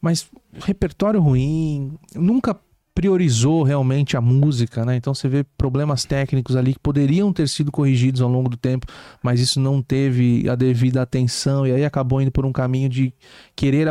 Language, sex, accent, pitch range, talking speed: Portuguese, male, Brazilian, 135-200 Hz, 175 wpm